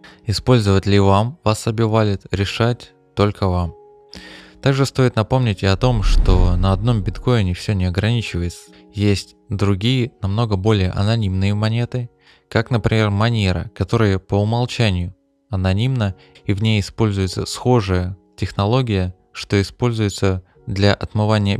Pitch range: 95-115 Hz